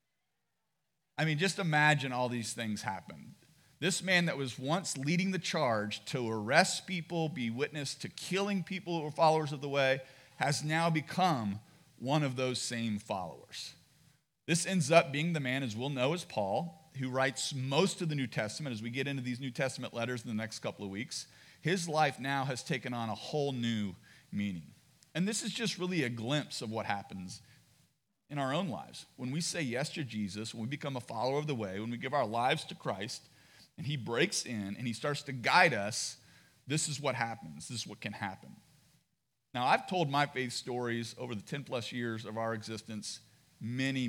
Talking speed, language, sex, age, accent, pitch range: 205 wpm, English, male, 40-59, American, 115-155 Hz